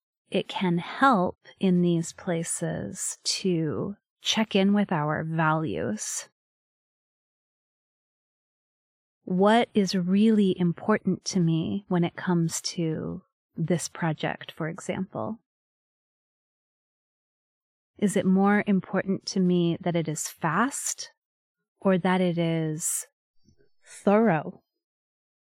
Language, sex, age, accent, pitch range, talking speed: English, female, 30-49, American, 175-220 Hz, 95 wpm